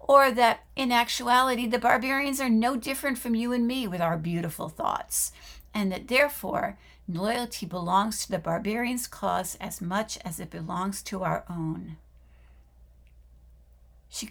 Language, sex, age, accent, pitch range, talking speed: English, female, 60-79, American, 170-235 Hz, 145 wpm